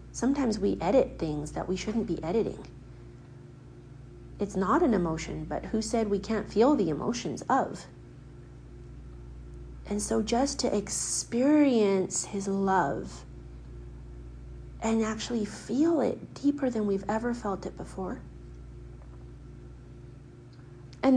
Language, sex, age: English, female, 40-59